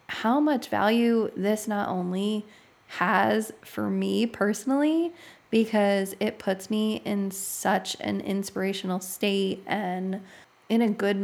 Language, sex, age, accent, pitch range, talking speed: English, female, 20-39, American, 185-215 Hz, 125 wpm